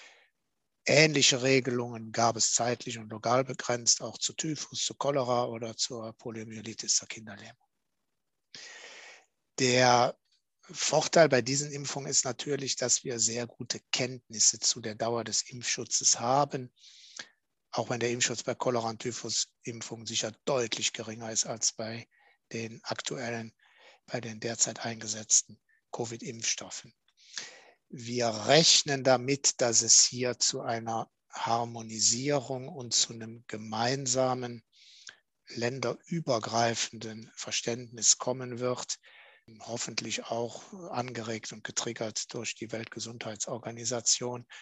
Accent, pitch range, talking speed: German, 115-125 Hz, 110 wpm